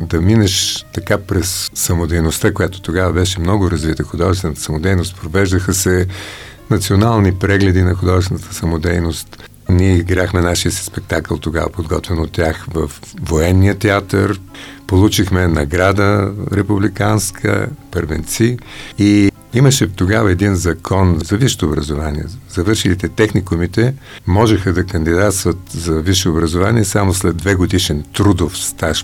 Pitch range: 85-110 Hz